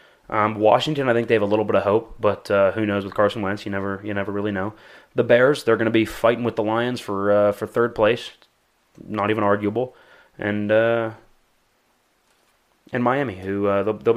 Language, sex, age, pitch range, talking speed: English, male, 20-39, 100-115 Hz, 210 wpm